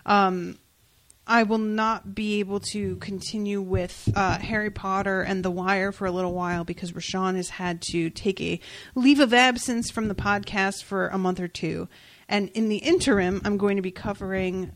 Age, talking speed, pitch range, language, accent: 30-49, 185 wpm, 180-215 Hz, English, American